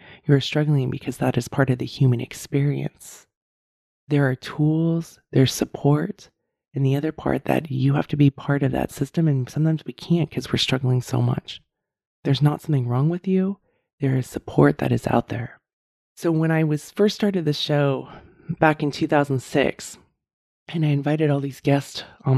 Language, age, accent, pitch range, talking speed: English, 20-39, American, 130-155 Hz, 180 wpm